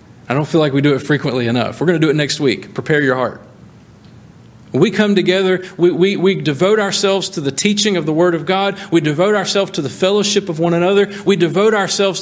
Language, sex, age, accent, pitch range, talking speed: English, male, 40-59, American, 125-180 Hz, 235 wpm